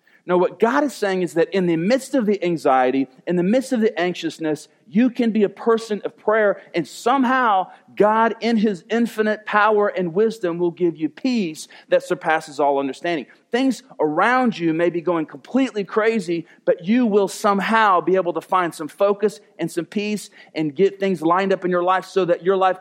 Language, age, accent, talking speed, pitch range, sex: English, 40-59, American, 200 wpm, 145-205 Hz, male